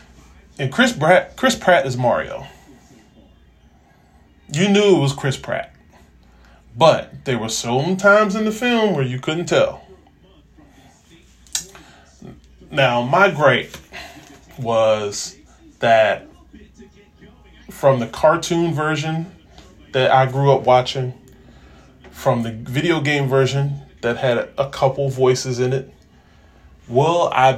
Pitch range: 110-155 Hz